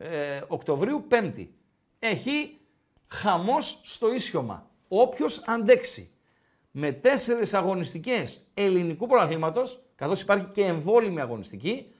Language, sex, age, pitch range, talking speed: Greek, male, 50-69, 155-230 Hz, 95 wpm